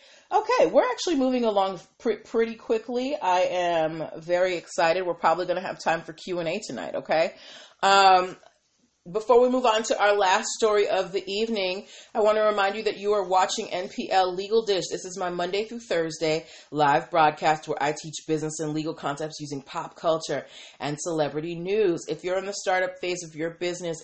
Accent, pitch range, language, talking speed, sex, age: American, 150-190 Hz, English, 190 wpm, female, 30-49